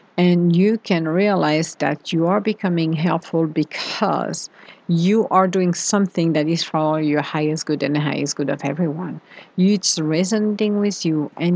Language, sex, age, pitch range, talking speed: English, female, 50-69, 155-195 Hz, 160 wpm